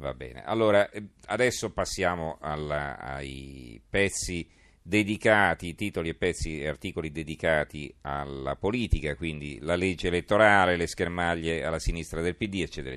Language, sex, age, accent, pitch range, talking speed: Italian, male, 50-69, native, 80-95 Hz, 125 wpm